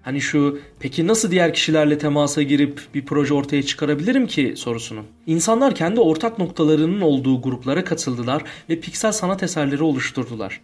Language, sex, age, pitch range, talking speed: Turkish, male, 40-59, 140-220 Hz, 145 wpm